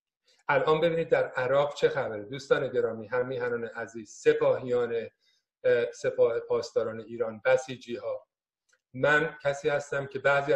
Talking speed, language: 120 wpm, Persian